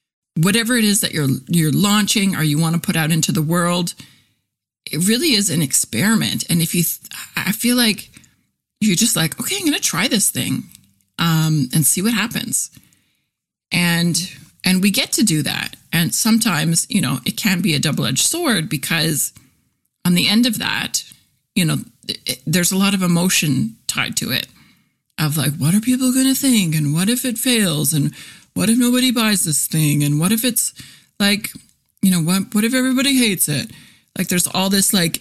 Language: English